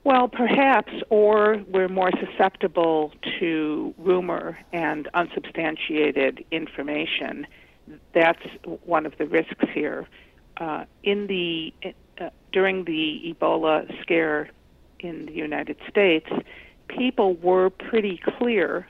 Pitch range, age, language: 155-190 Hz, 50-69, English